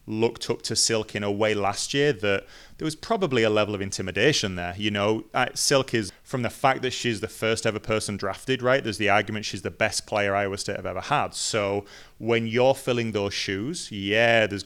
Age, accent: 30-49, British